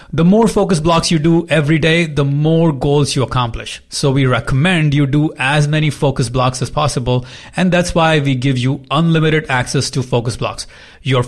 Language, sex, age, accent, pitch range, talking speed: English, male, 30-49, Indian, 125-160 Hz, 190 wpm